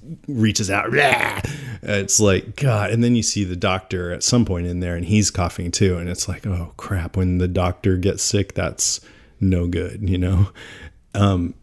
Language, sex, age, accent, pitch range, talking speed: English, male, 30-49, American, 90-105 Hz, 185 wpm